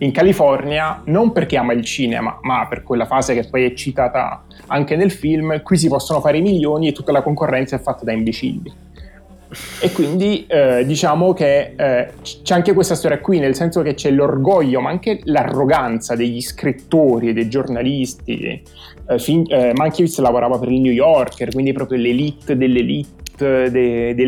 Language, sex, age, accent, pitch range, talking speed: Italian, male, 30-49, native, 125-155 Hz, 170 wpm